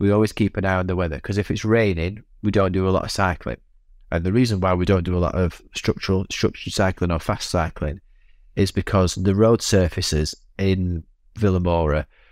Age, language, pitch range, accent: 30-49, English, 85-100 Hz, British